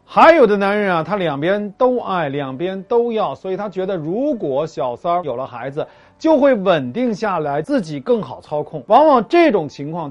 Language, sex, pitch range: Chinese, male, 160-255 Hz